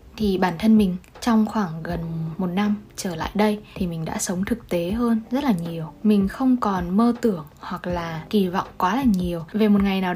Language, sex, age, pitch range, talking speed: Vietnamese, female, 20-39, 180-225 Hz, 225 wpm